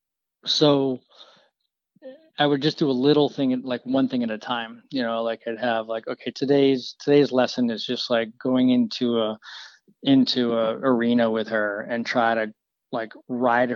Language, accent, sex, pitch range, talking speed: English, American, male, 115-140 Hz, 175 wpm